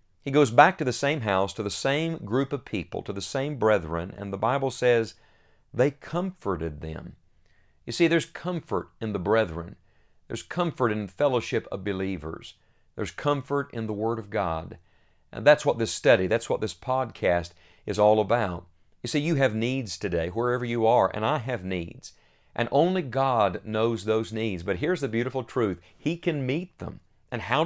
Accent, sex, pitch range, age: American, male, 100-140 Hz, 50-69